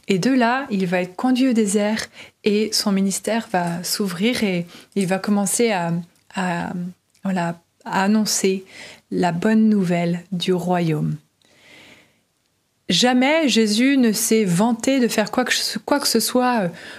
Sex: female